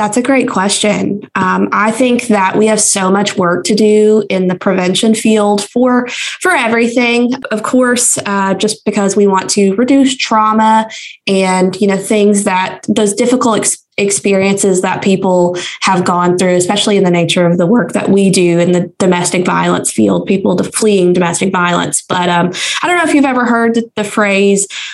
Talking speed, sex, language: 180 wpm, female, English